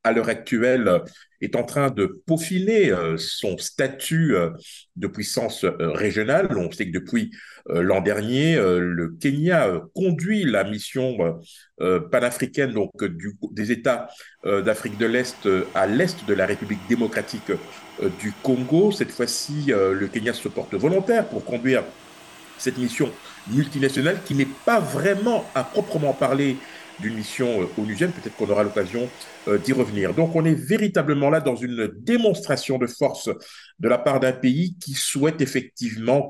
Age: 50-69